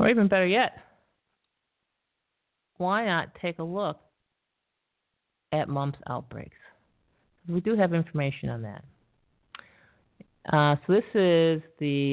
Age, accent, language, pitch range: 50-69, American, English, 145-185 Hz